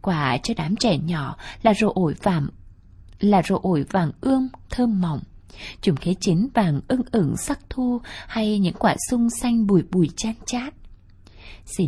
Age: 20-39